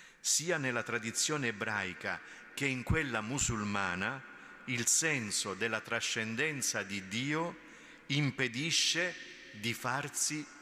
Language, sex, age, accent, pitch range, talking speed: Italian, male, 50-69, native, 105-145 Hz, 95 wpm